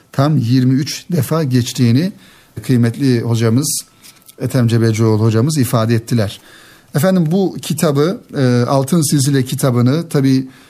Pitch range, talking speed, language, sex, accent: 120-140 Hz, 100 wpm, Turkish, male, native